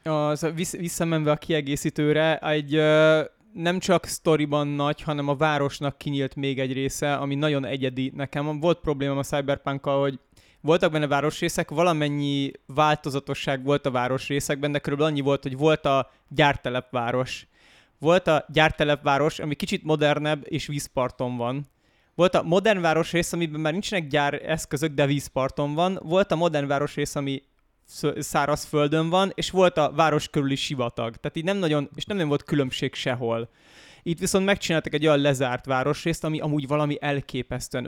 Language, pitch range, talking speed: Hungarian, 135-155 Hz, 155 wpm